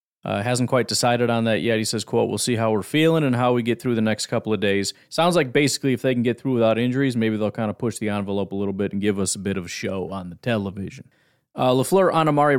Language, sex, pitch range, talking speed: English, male, 110-140 Hz, 285 wpm